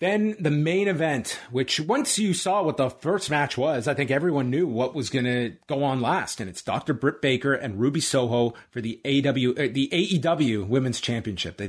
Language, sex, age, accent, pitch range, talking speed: English, male, 30-49, American, 130-175 Hz, 195 wpm